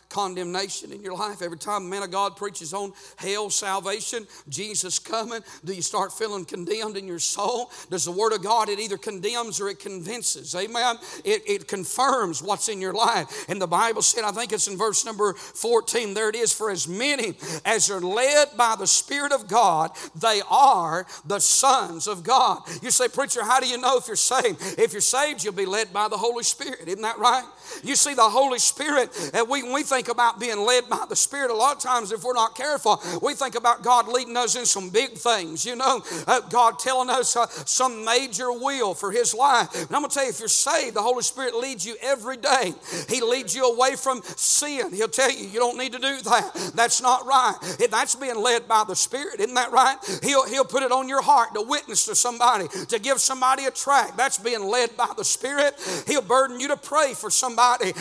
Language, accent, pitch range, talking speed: English, American, 205-265 Hz, 225 wpm